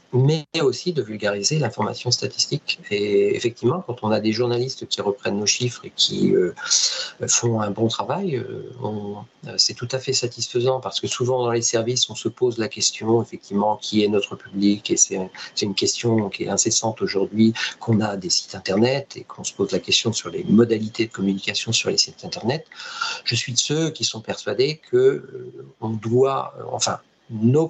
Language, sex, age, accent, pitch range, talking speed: French, male, 50-69, French, 110-135 Hz, 195 wpm